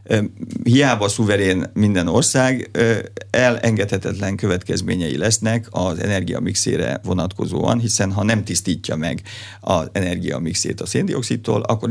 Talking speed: 100 wpm